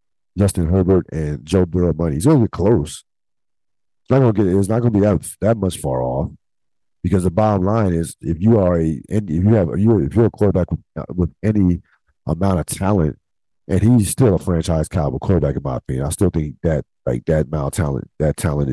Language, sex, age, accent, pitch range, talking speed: English, male, 50-69, American, 80-105 Hz, 215 wpm